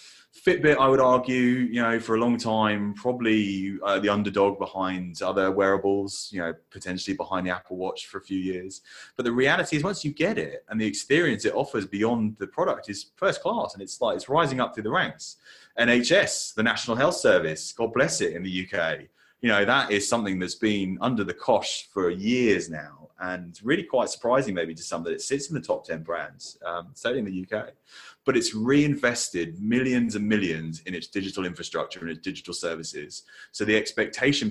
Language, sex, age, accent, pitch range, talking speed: English, male, 20-39, British, 90-120 Hz, 205 wpm